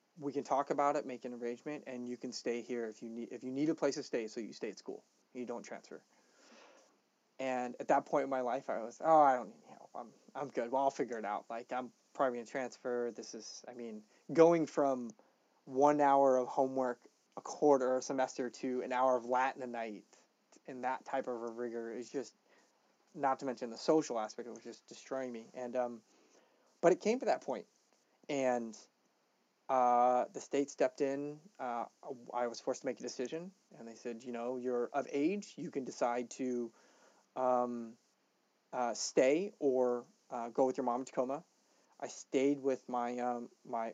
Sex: male